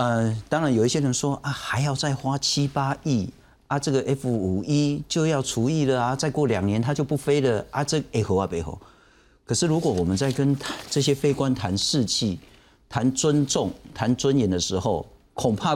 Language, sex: Chinese, male